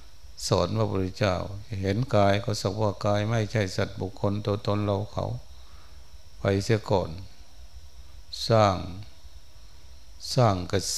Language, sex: Thai, male